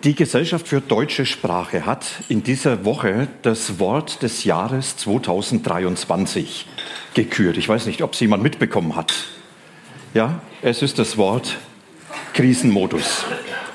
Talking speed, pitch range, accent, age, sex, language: 125 wpm, 110-145 Hz, German, 40-59, male, German